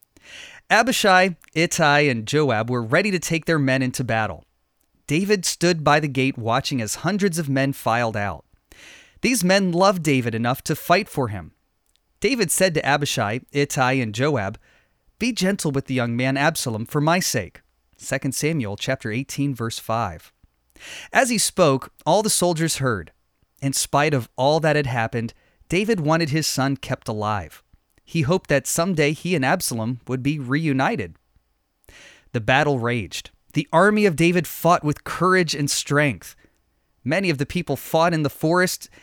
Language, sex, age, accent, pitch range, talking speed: English, male, 30-49, American, 125-170 Hz, 165 wpm